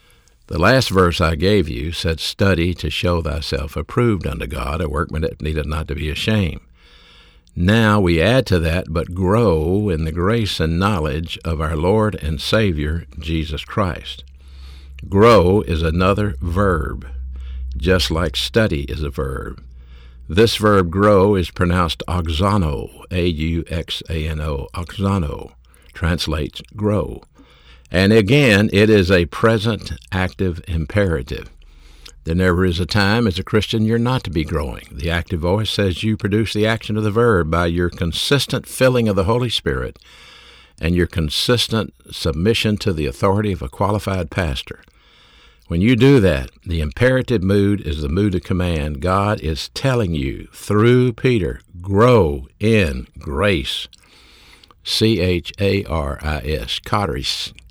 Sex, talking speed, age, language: male, 140 wpm, 60-79, English